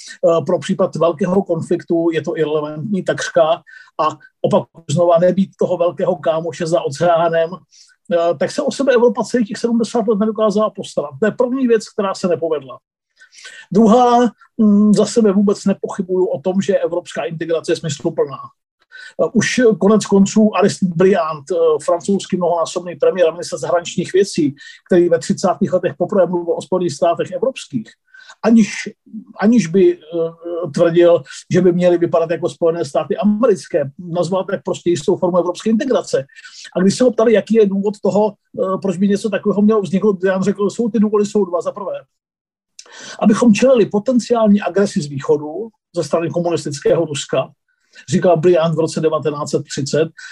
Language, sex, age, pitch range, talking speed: Czech, male, 50-69, 170-220 Hz, 155 wpm